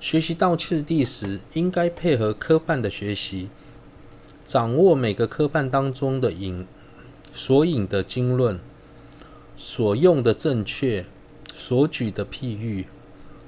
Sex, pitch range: male, 100-150 Hz